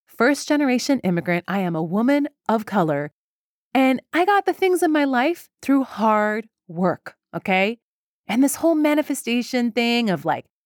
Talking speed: 150 wpm